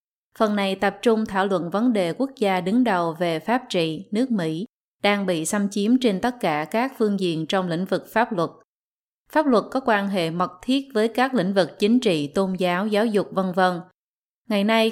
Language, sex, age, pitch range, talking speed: Vietnamese, female, 20-39, 180-225 Hz, 215 wpm